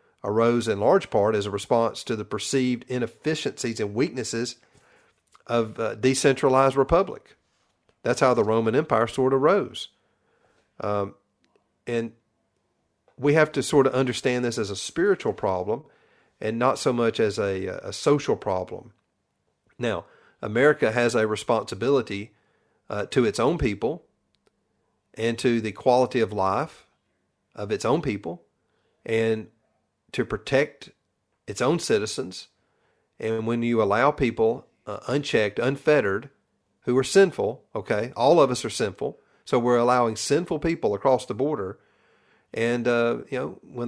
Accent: American